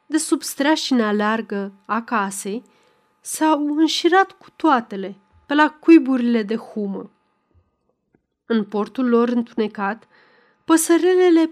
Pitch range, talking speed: 205-280 Hz, 105 wpm